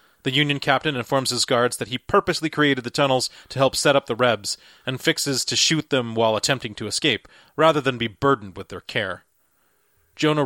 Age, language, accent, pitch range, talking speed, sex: 30-49, English, American, 120-140 Hz, 200 wpm, male